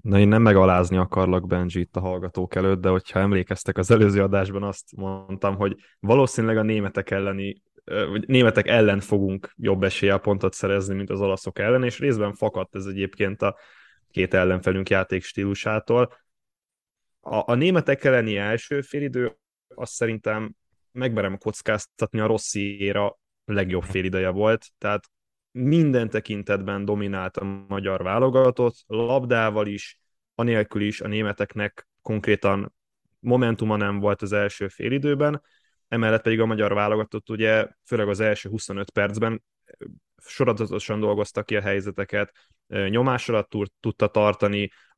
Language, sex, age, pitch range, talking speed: Hungarian, male, 10-29, 100-110 Hz, 135 wpm